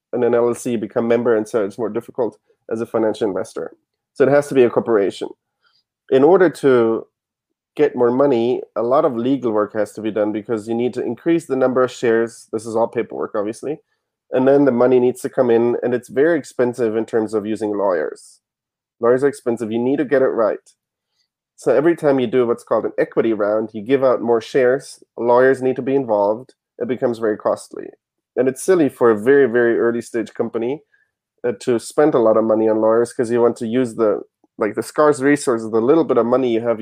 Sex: male